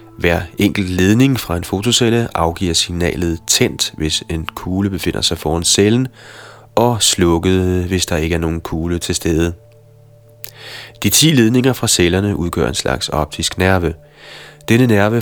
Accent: native